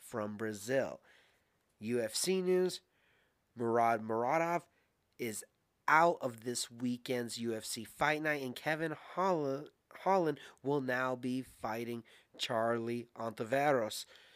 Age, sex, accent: 30-49, male, American